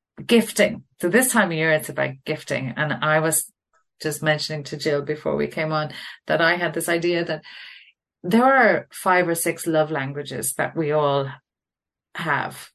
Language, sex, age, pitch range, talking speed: English, female, 40-59, 145-175 Hz, 175 wpm